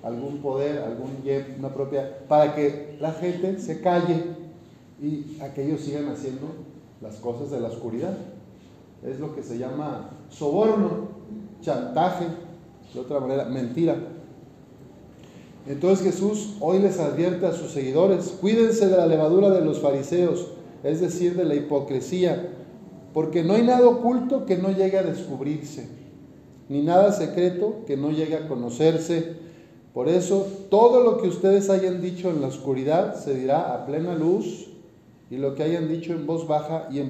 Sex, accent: male, Mexican